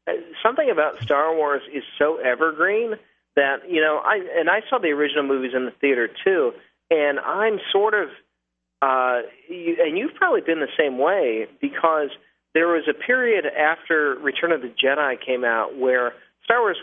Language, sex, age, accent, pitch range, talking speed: English, male, 40-59, American, 135-220 Hz, 175 wpm